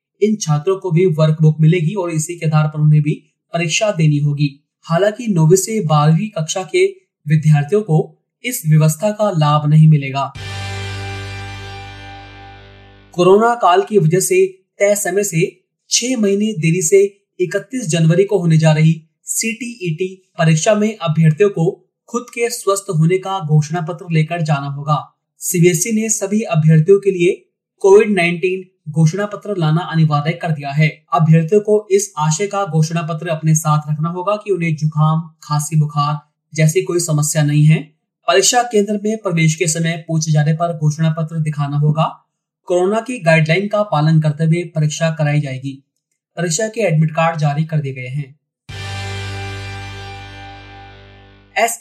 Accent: native